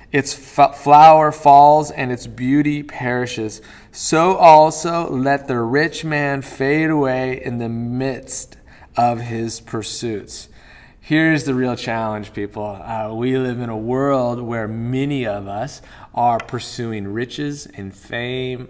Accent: American